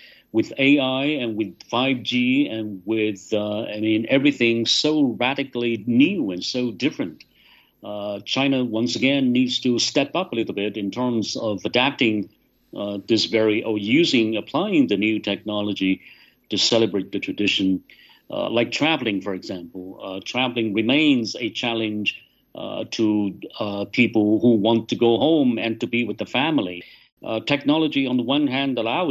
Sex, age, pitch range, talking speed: male, 50-69, 105-130 Hz, 160 wpm